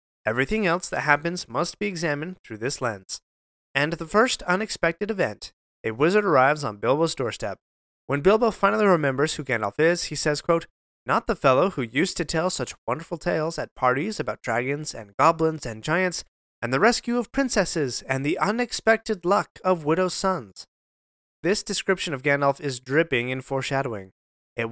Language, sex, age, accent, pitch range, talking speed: English, male, 20-39, American, 130-190 Hz, 170 wpm